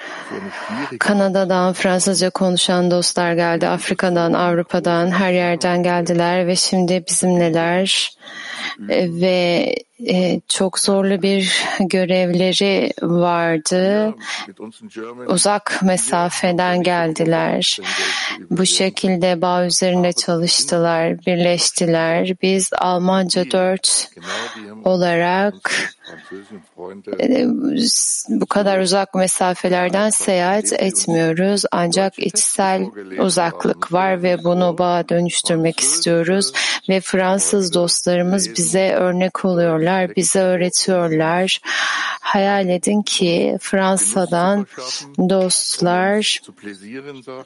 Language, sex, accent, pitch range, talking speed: Turkish, female, native, 175-190 Hz, 75 wpm